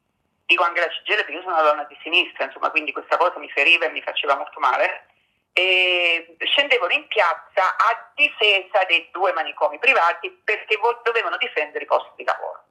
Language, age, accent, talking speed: Italian, 50-69, native, 180 wpm